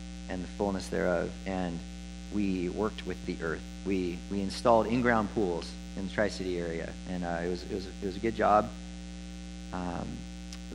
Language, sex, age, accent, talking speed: English, male, 30-49, American, 180 wpm